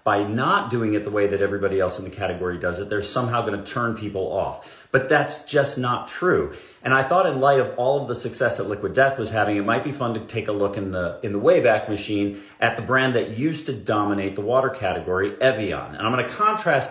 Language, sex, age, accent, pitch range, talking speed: English, male, 40-59, American, 110-145 Hz, 245 wpm